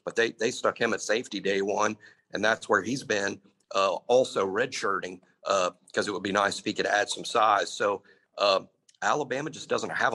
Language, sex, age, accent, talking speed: English, male, 50-69, American, 215 wpm